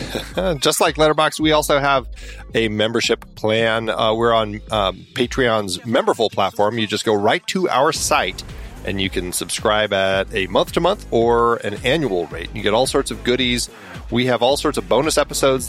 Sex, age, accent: male, 30-49, American